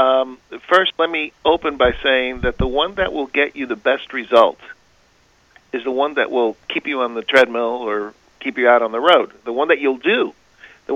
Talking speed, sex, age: 220 wpm, male, 40-59